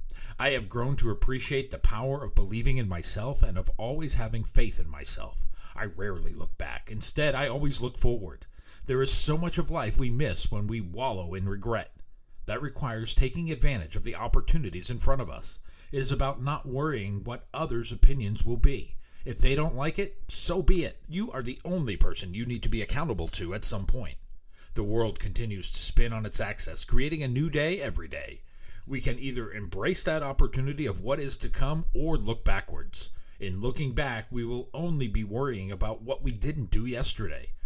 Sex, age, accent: male, 40-59, American